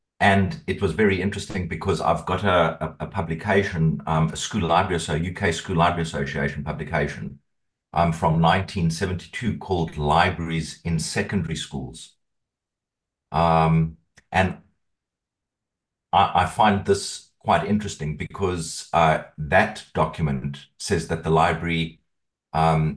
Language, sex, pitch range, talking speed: English, male, 80-95 Hz, 125 wpm